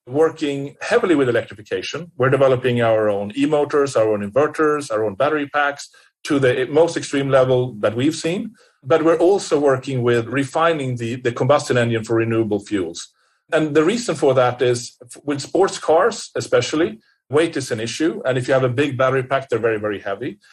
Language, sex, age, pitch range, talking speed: English, male, 40-59, 125-150 Hz, 185 wpm